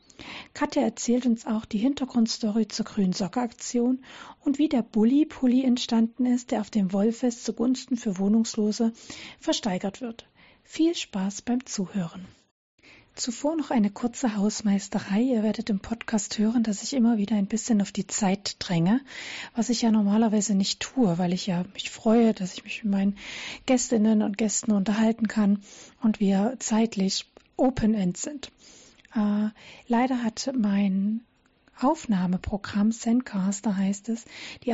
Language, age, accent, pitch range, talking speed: German, 40-59, German, 205-240 Hz, 140 wpm